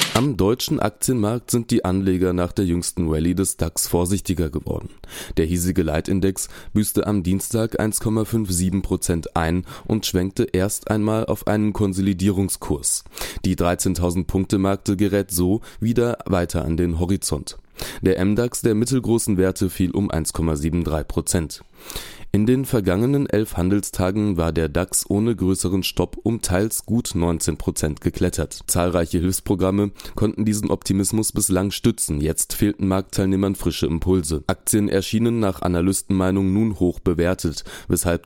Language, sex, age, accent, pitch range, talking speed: German, male, 20-39, German, 85-105 Hz, 135 wpm